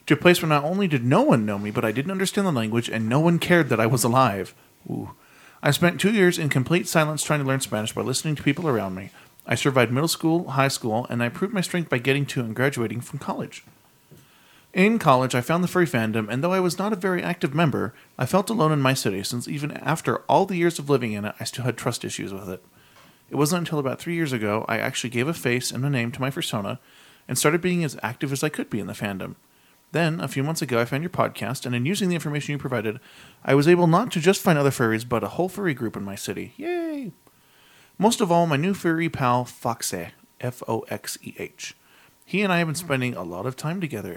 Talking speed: 250 wpm